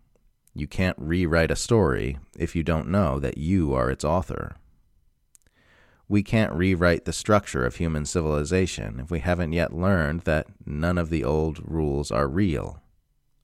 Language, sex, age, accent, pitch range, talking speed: English, male, 40-59, American, 75-95 Hz, 155 wpm